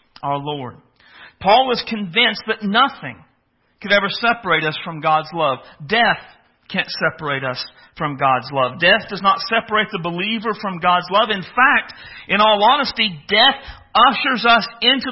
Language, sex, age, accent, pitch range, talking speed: English, male, 50-69, American, 195-250 Hz, 155 wpm